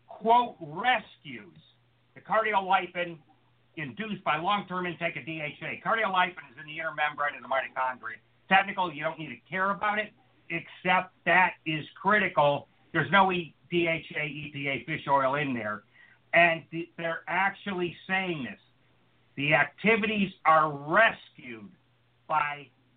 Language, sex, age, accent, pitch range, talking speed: English, male, 50-69, American, 145-190 Hz, 130 wpm